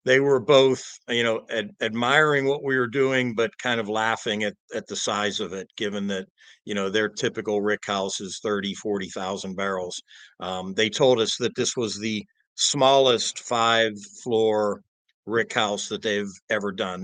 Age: 50-69